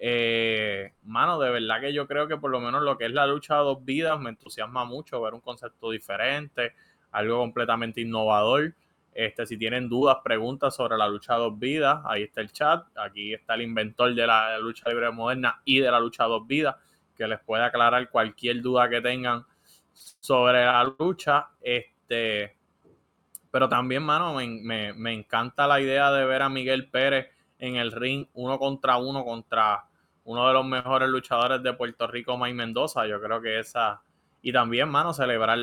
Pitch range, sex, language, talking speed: 115-130 Hz, male, English, 185 wpm